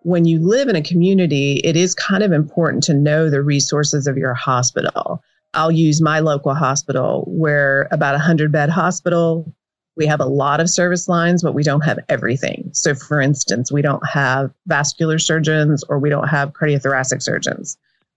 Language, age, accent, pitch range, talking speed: English, 40-59, American, 135-165 Hz, 180 wpm